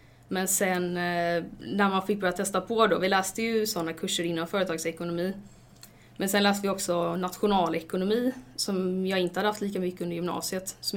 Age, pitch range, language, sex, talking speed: 20-39, 170-195 Hz, English, female, 175 wpm